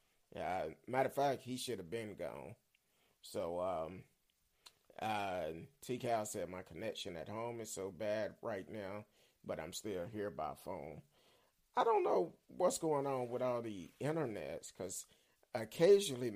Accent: American